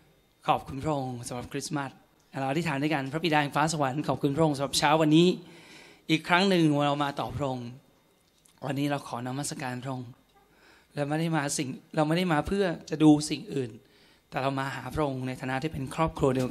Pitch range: 135-155 Hz